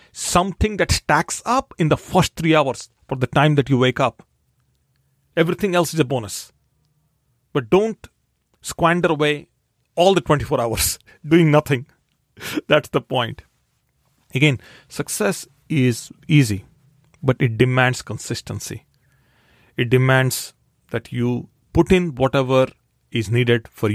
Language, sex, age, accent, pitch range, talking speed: English, male, 40-59, Indian, 120-155 Hz, 130 wpm